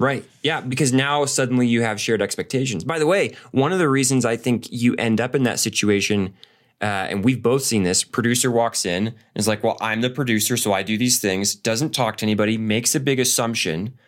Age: 20-39